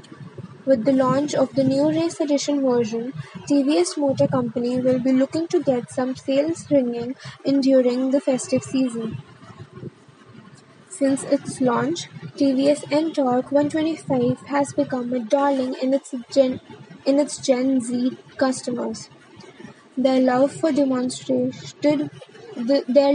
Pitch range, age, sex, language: 255-285 Hz, 10-29, female, English